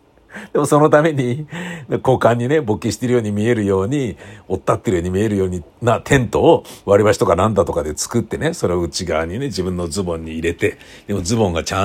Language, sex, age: Japanese, male, 60-79